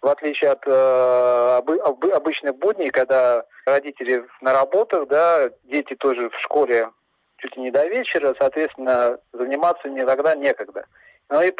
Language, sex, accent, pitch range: Russian, male, native, 130-160 Hz